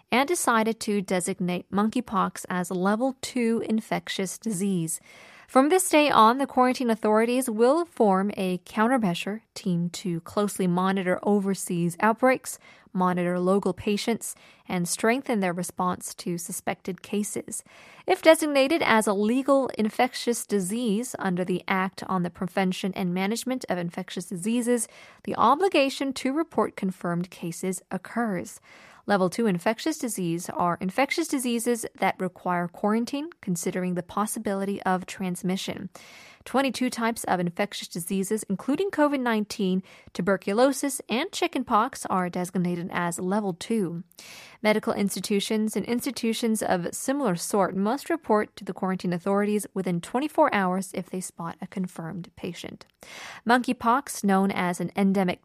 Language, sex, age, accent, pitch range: Korean, female, 20-39, American, 185-235 Hz